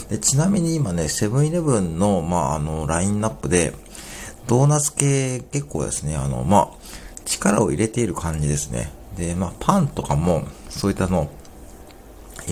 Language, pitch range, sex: Japanese, 75-115 Hz, male